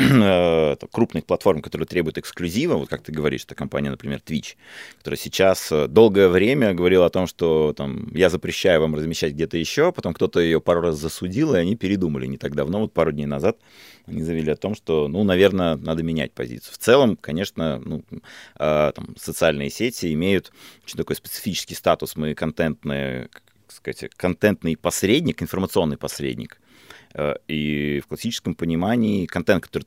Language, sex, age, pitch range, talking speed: Russian, male, 30-49, 70-90 Hz, 155 wpm